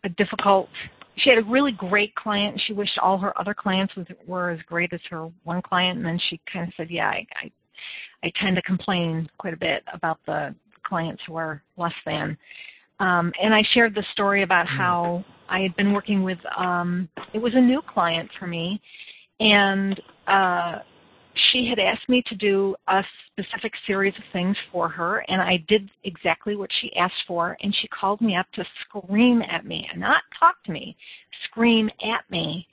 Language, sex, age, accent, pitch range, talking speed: English, female, 40-59, American, 175-210 Hz, 195 wpm